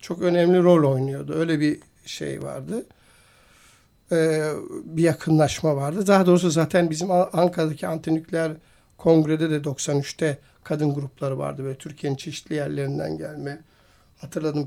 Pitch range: 145-180 Hz